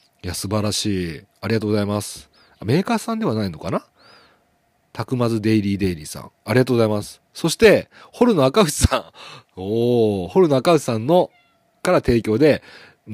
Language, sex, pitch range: Japanese, male, 105-145 Hz